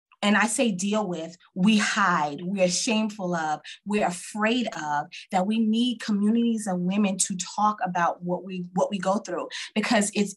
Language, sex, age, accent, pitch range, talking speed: English, female, 20-39, American, 180-210 Hz, 175 wpm